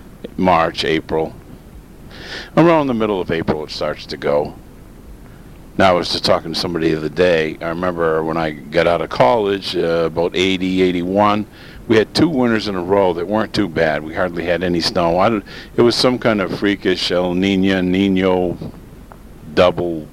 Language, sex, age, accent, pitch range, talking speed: English, male, 50-69, American, 85-105 Hz, 175 wpm